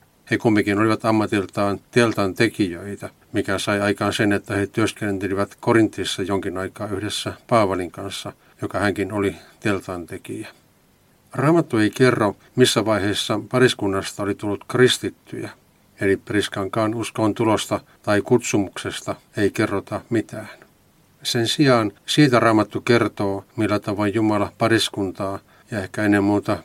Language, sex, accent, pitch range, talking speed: Finnish, male, native, 100-115 Hz, 125 wpm